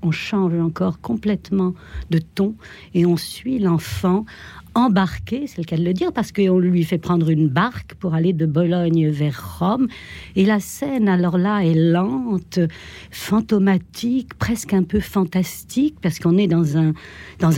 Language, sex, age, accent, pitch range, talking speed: French, female, 60-79, French, 165-210 Hz, 165 wpm